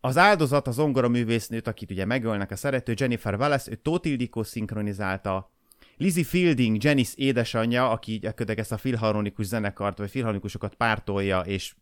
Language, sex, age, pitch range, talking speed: Hungarian, male, 30-49, 100-130 Hz, 140 wpm